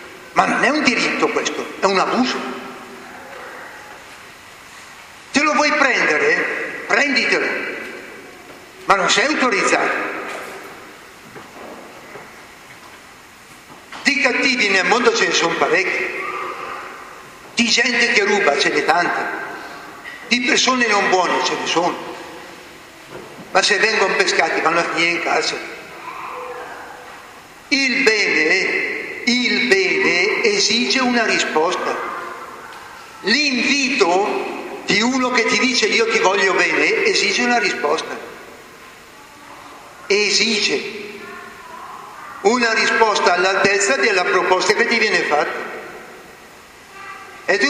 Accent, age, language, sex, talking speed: native, 60-79, Italian, male, 105 wpm